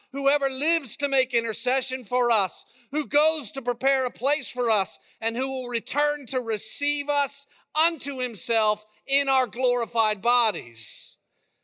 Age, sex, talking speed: 50-69, male, 145 wpm